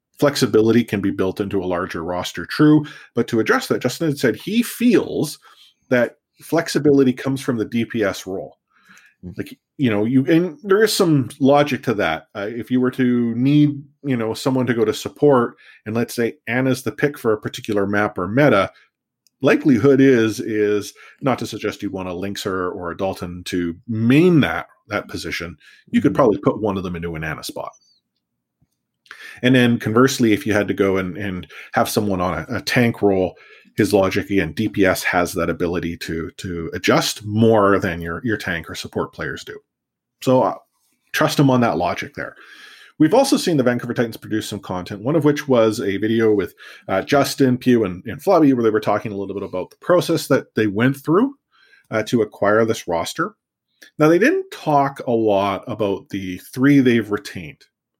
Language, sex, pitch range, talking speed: English, male, 100-135 Hz, 190 wpm